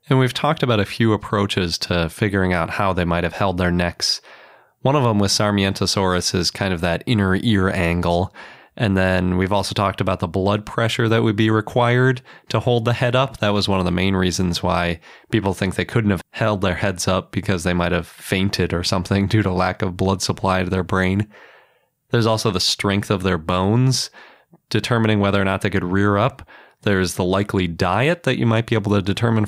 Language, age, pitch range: English, 20-39, 90-110 Hz